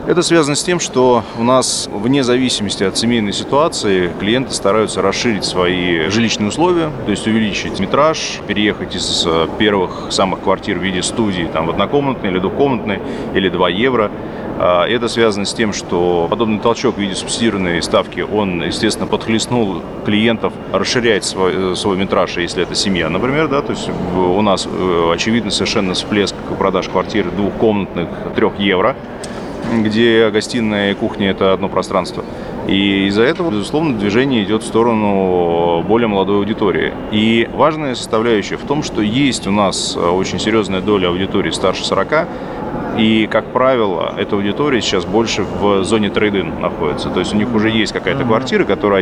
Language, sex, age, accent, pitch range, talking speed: Russian, male, 30-49, native, 95-115 Hz, 155 wpm